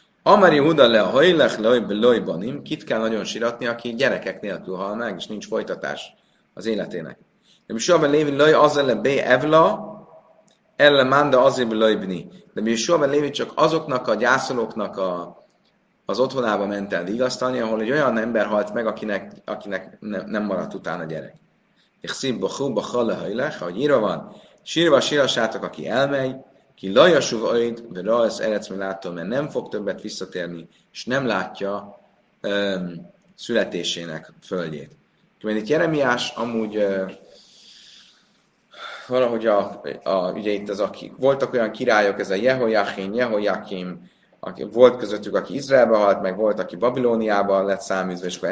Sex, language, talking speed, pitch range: male, Hungarian, 145 wpm, 95-130 Hz